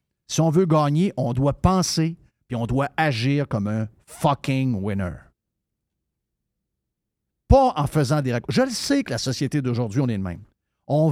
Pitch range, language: 125-170 Hz, French